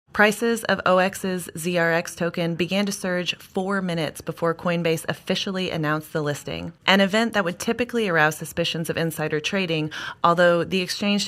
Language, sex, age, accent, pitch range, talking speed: English, female, 20-39, American, 165-200 Hz, 155 wpm